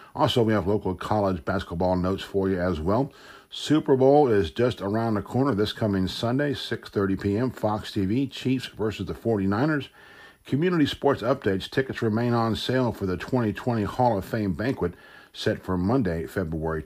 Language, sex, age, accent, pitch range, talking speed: English, male, 50-69, American, 95-125 Hz, 165 wpm